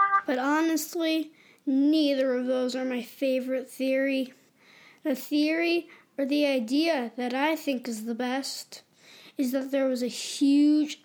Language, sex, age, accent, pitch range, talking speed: English, female, 20-39, American, 265-310 Hz, 140 wpm